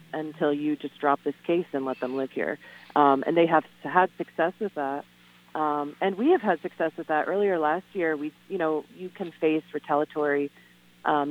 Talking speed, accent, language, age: 200 wpm, American, English, 30-49